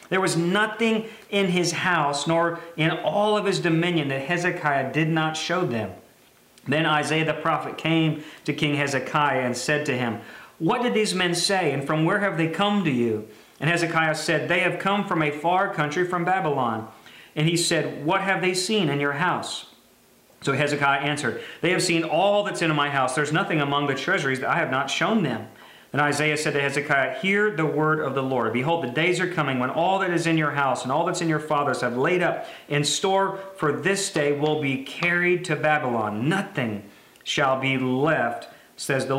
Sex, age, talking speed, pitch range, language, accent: male, 40-59, 205 wpm, 140-175 Hz, English, American